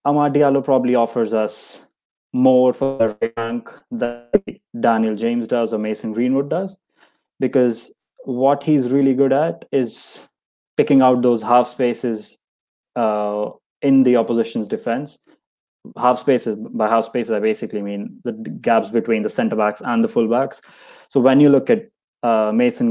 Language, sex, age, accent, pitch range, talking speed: English, male, 20-39, Indian, 110-130 Hz, 150 wpm